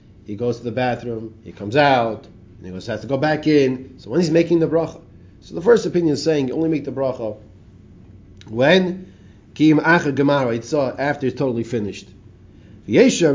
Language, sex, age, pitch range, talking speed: English, male, 30-49, 105-155 Hz, 170 wpm